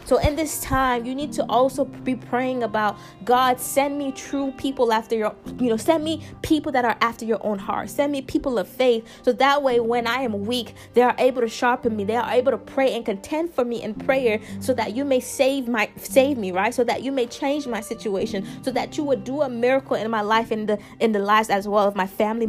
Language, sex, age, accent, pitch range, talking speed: English, female, 20-39, American, 215-270 Hz, 250 wpm